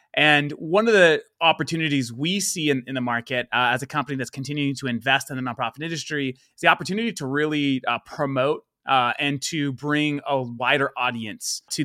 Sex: male